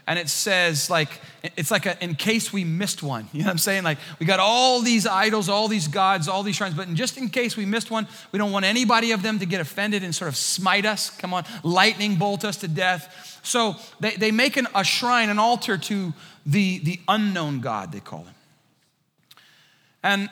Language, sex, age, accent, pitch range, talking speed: English, male, 30-49, American, 170-210 Hz, 225 wpm